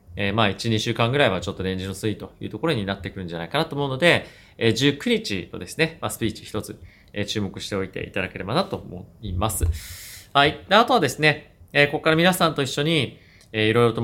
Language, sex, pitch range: Japanese, male, 105-155 Hz